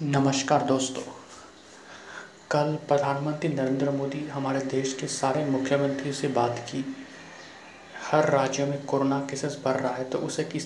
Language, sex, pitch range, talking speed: Hindi, male, 135-150 Hz, 140 wpm